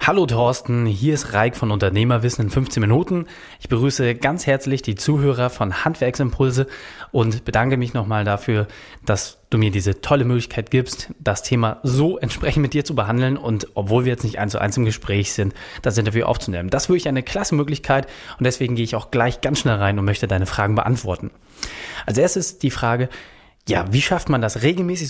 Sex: male